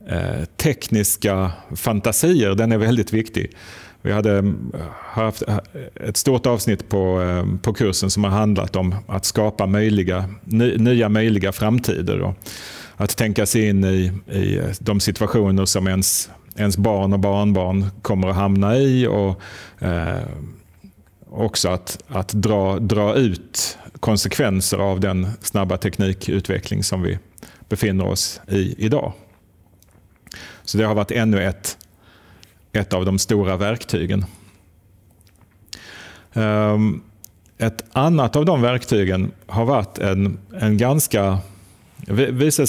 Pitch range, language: 95-115 Hz, Swedish